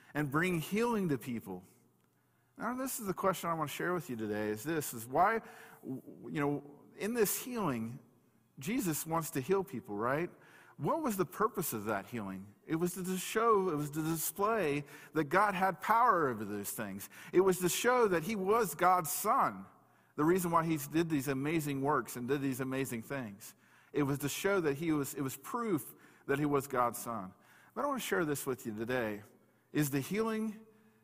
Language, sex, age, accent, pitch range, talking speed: English, male, 40-59, American, 125-180 Hz, 200 wpm